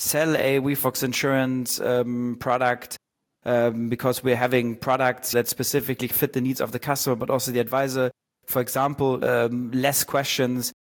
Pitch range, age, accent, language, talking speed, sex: 125-140 Hz, 30-49, German, English, 155 wpm, male